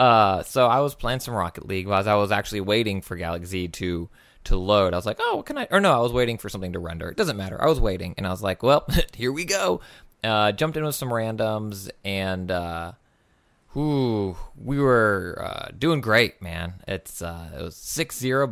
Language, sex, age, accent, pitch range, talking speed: English, male, 20-39, American, 95-135 Hz, 215 wpm